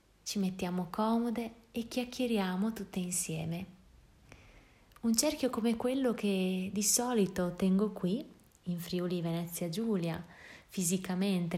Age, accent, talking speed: 20-39, native, 110 wpm